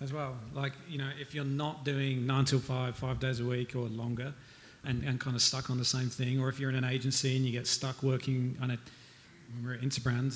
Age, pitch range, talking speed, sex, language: 40-59, 125-150 Hz, 255 wpm, male, English